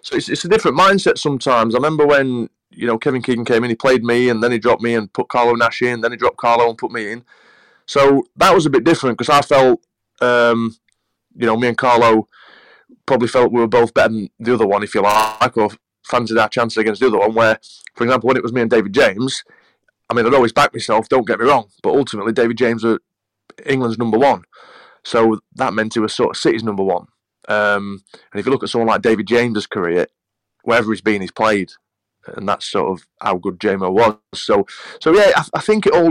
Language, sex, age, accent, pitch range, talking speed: English, male, 20-39, British, 110-130 Hz, 240 wpm